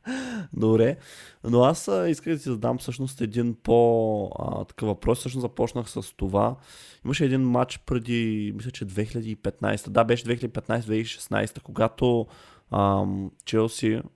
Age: 20-39